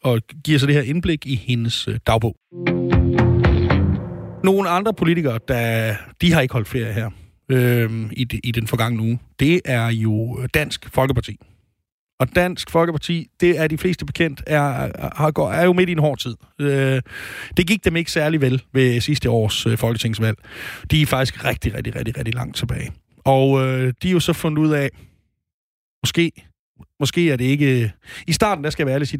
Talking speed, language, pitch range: 185 wpm, Danish, 115-150 Hz